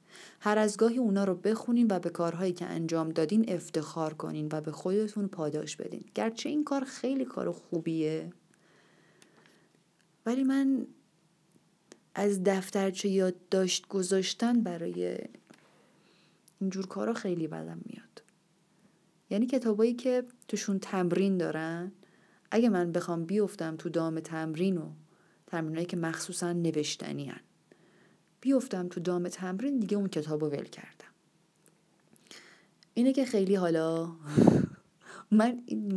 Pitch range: 160-210 Hz